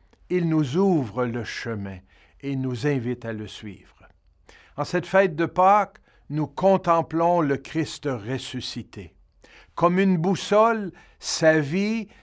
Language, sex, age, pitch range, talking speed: French, male, 60-79, 105-150 Hz, 130 wpm